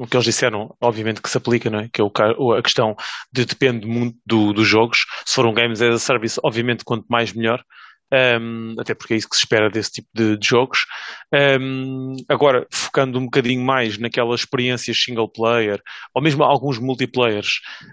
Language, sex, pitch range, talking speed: English, male, 115-135 Hz, 195 wpm